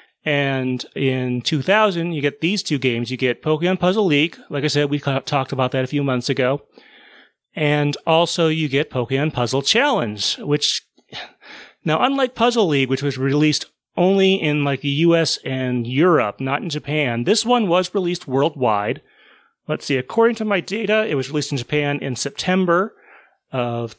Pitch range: 130-165 Hz